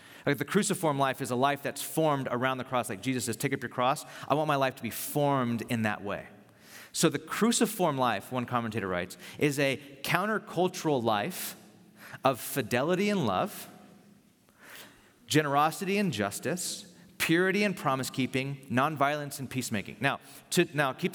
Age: 30-49